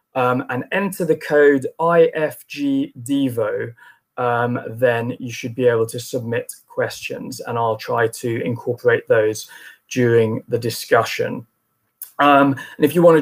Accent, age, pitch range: British, 20-39, 125-155 Hz